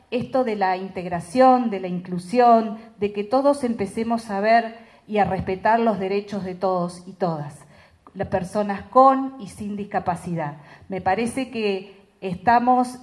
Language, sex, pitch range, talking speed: Spanish, female, 205-265 Hz, 145 wpm